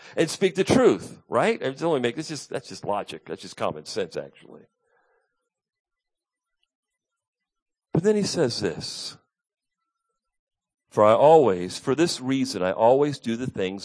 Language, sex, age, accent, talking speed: English, male, 50-69, American, 125 wpm